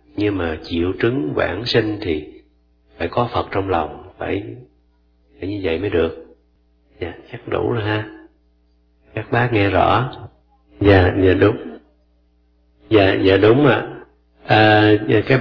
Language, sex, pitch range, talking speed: Vietnamese, male, 80-110 Hz, 135 wpm